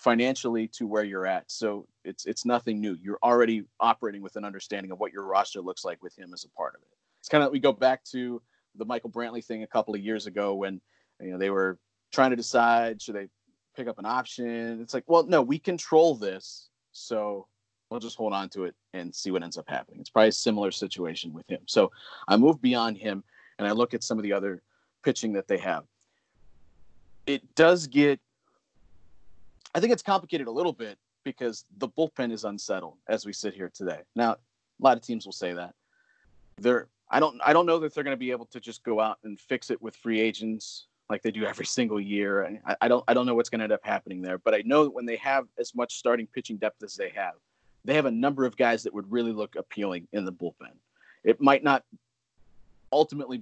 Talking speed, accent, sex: 230 wpm, American, male